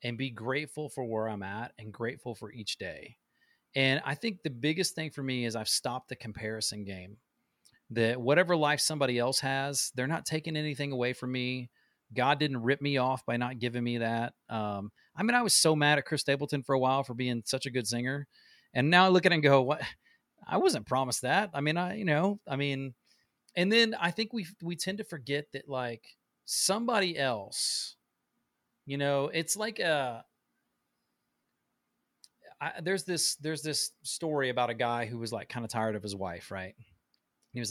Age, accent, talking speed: 30-49, American, 200 wpm